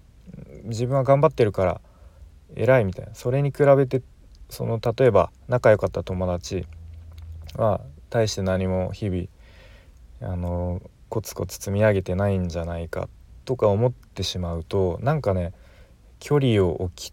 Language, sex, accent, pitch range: Japanese, male, native, 85-110 Hz